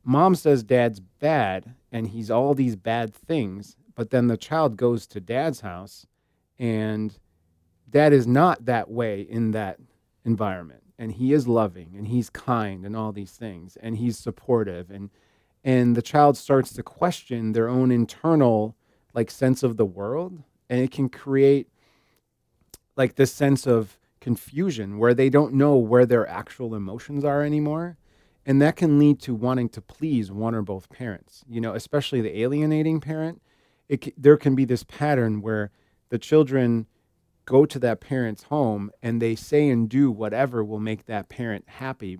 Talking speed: 170 wpm